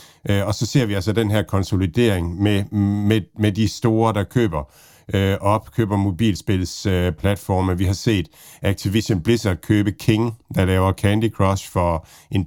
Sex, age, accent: male, 50-69, native